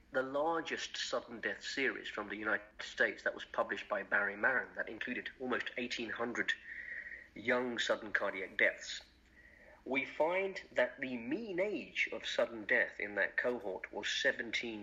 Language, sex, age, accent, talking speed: English, male, 50-69, British, 150 wpm